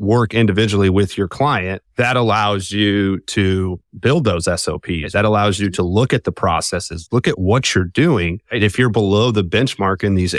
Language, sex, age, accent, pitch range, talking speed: English, male, 30-49, American, 95-115 Hz, 190 wpm